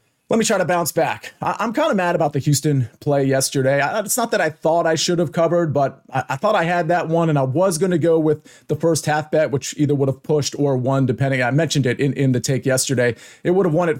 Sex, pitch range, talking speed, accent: male, 140-190 Hz, 270 wpm, American